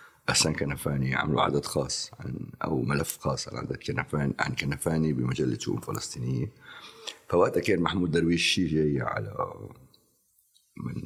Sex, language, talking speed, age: male, Arabic, 130 wpm, 50-69